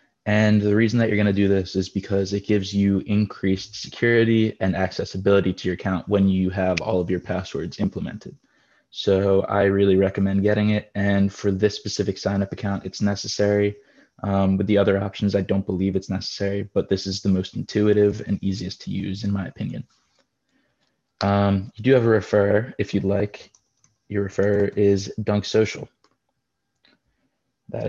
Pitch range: 95-105 Hz